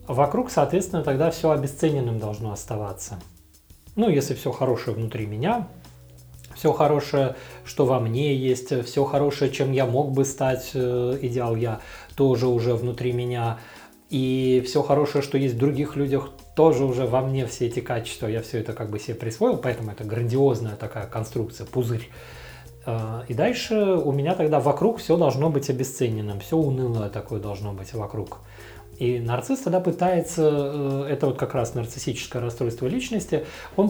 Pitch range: 115-160 Hz